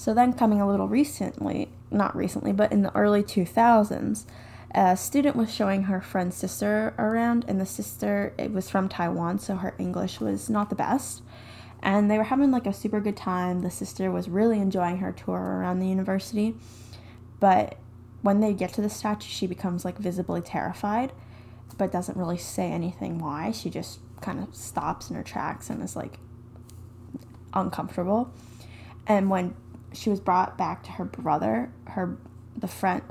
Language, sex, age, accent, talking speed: English, female, 10-29, American, 175 wpm